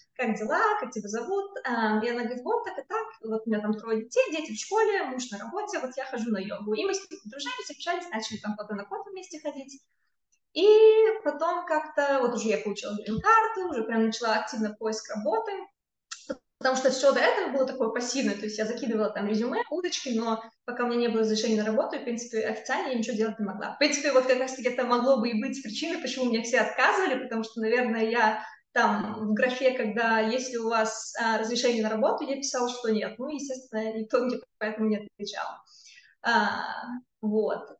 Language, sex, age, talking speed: Russian, female, 20-39, 210 wpm